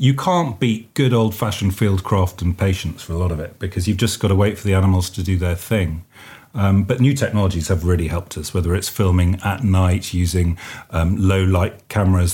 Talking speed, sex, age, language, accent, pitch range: 215 wpm, male, 40-59, English, British, 90-120 Hz